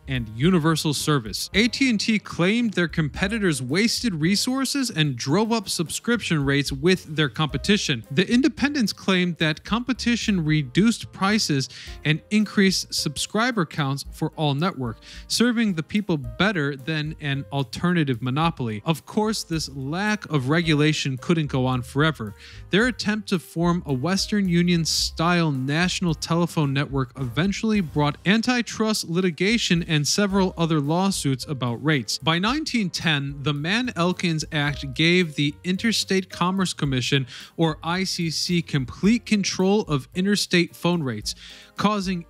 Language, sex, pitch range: English, male, 145-195 Hz